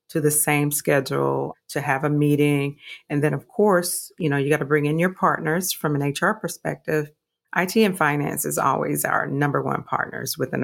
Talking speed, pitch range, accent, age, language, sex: 195 wpm, 145-180 Hz, American, 40-59, English, female